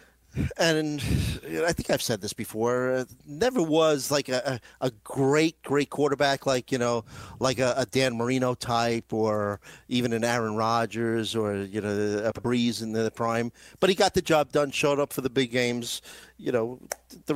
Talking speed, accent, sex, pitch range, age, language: 180 wpm, American, male, 120-150 Hz, 40-59, English